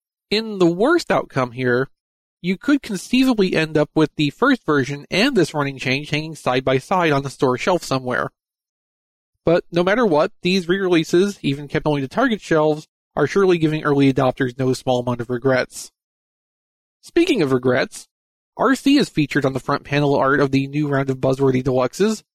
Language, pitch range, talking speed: English, 130-180 Hz, 175 wpm